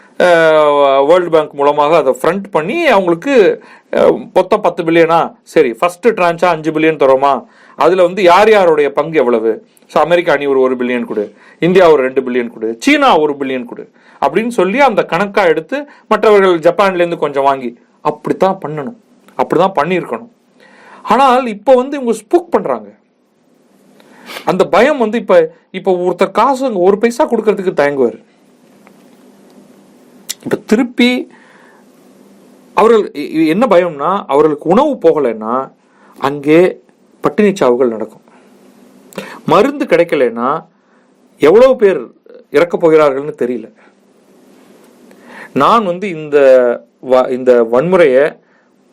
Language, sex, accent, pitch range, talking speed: Tamil, male, native, 155-245 Hz, 115 wpm